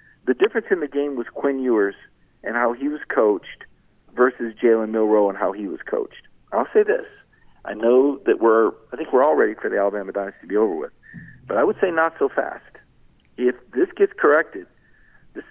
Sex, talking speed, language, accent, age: male, 210 wpm, English, American, 50-69